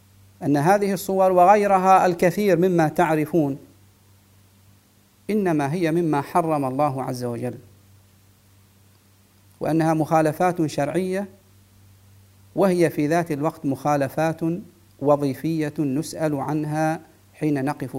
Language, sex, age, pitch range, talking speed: English, male, 50-69, 100-170 Hz, 90 wpm